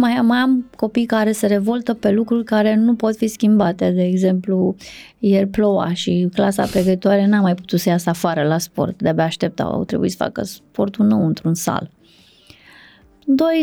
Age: 20-39